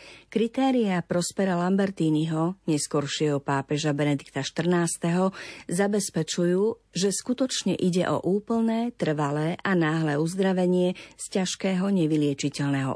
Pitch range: 155-195 Hz